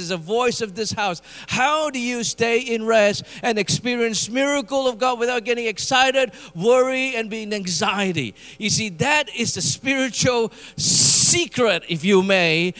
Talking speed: 160 wpm